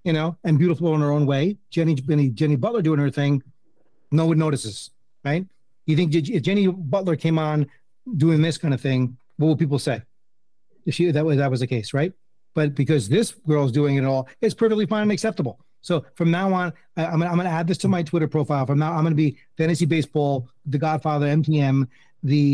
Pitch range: 135-165 Hz